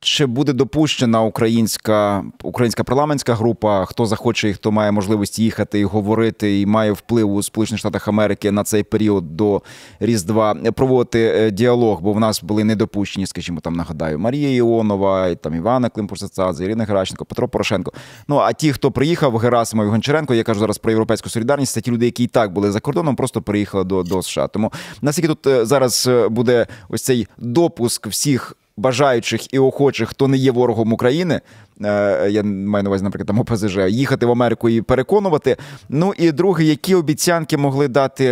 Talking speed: 170 wpm